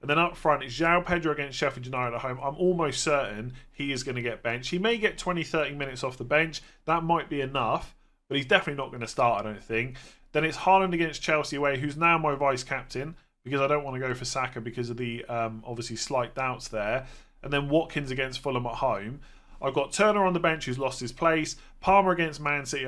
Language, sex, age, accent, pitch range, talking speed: English, male, 30-49, British, 125-165 Hz, 240 wpm